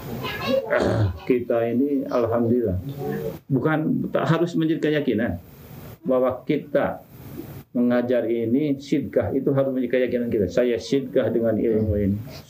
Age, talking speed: 50-69, 115 wpm